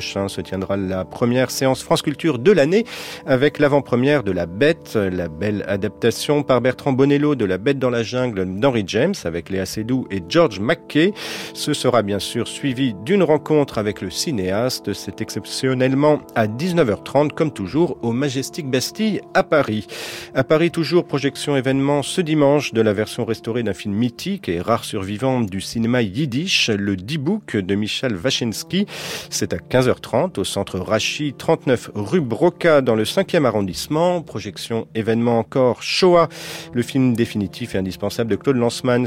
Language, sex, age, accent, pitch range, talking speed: French, male, 40-59, French, 105-145 Hz, 165 wpm